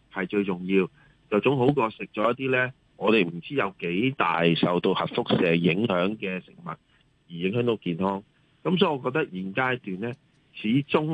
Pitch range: 95-140 Hz